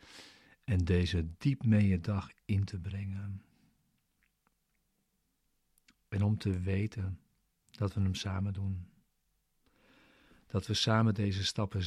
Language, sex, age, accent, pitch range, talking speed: Dutch, male, 50-69, Dutch, 95-105 Hz, 115 wpm